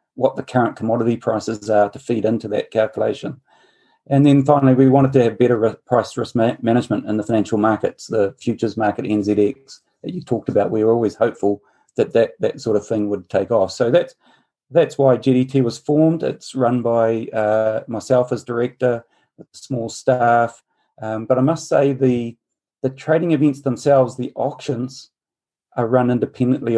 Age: 40-59